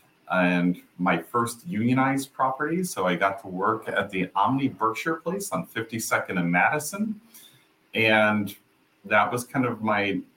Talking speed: 145 wpm